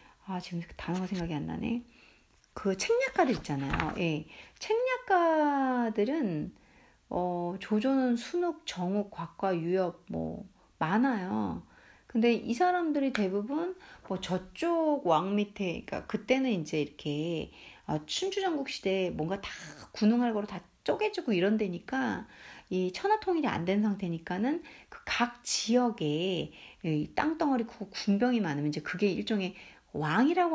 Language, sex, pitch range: Korean, female, 185-285 Hz